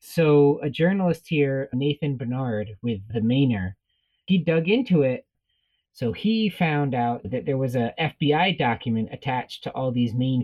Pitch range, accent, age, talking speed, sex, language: 120-160 Hz, American, 30-49, 160 wpm, male, English